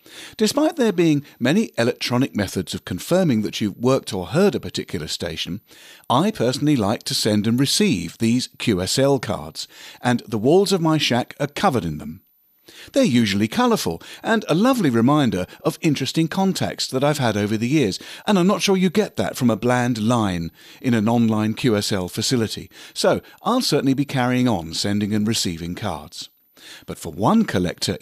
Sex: male